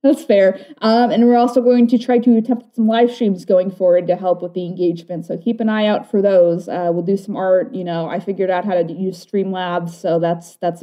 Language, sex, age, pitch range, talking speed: English, female, 20-39, 185-225 Hz, 250 wpm